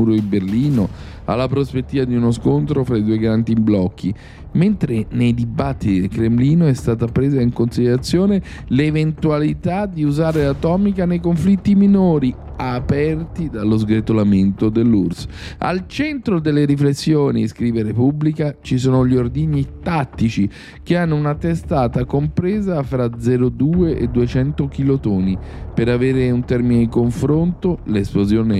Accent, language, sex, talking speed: native, Italian, male, 130 wpm